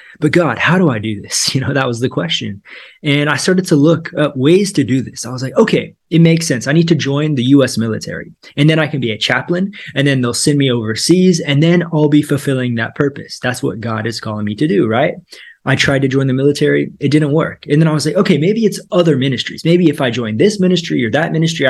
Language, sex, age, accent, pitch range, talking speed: English, male, 20-39, American, 125-160 Hz, 260 wpm